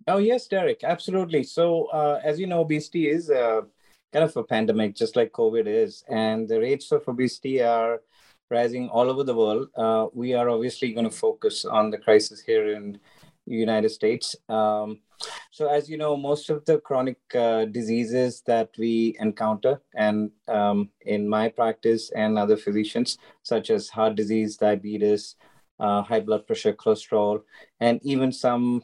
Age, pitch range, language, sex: 30-49, 110-145 Hz, English, male